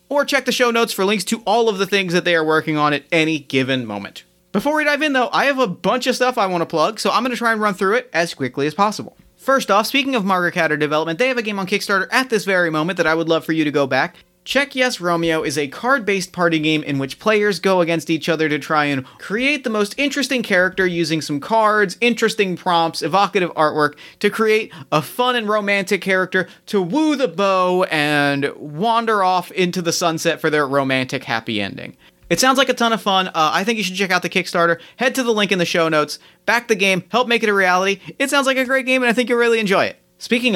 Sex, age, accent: male, 30-49, American